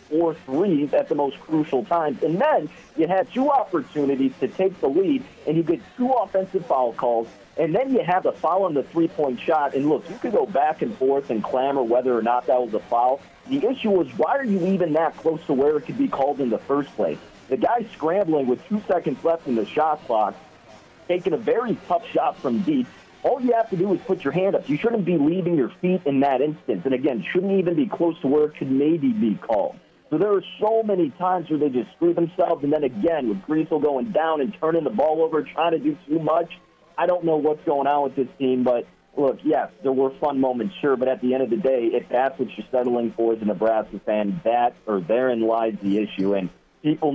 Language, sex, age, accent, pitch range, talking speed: English, male, 40-59, American, 125-180 Hz, 240 wpm